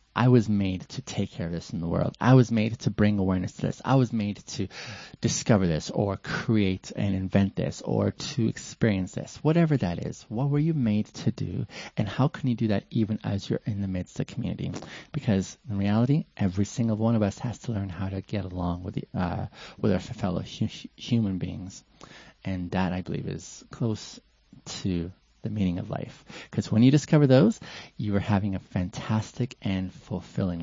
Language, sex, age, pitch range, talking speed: English, male, 20-39, 95-125 Hz, 205 wpm